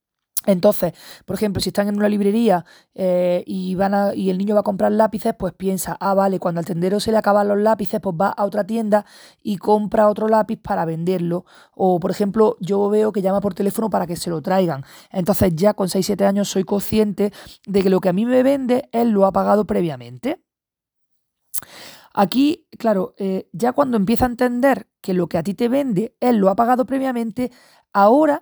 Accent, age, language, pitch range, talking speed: Spanish, 20-39, Spanish, 185-225 Hz, 200 wpm